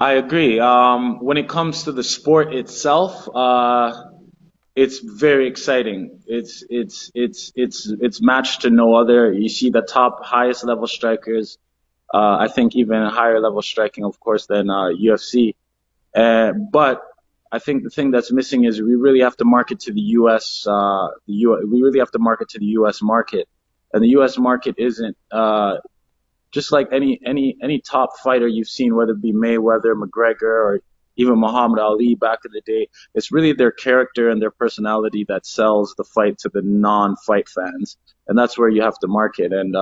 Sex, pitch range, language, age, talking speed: male, 110-125 Hz, English, 20-39, 185 wpm